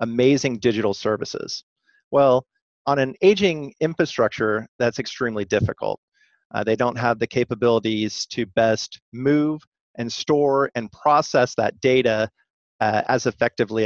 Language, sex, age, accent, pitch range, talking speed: English, male, 40-59, American, 115-145 Hz, 125 wpm